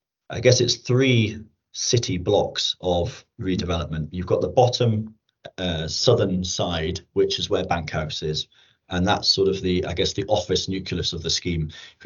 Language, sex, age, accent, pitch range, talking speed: English, male, 30-49, British, 85-100 Hz, 175 wpm